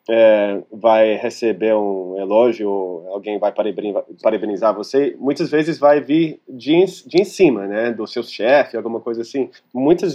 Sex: male